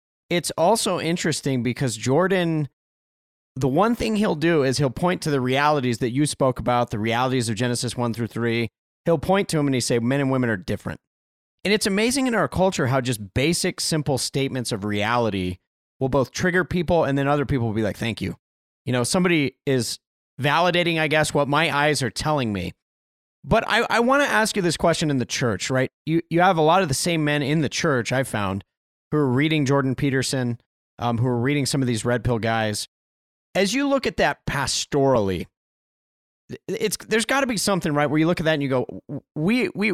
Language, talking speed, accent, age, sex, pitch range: English, 215 wpm, American, 30-49, male, 120-165 Hz